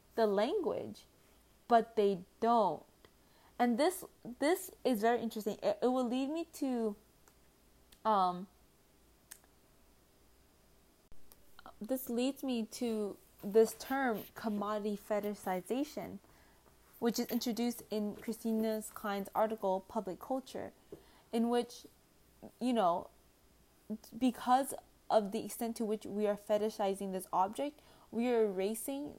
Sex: female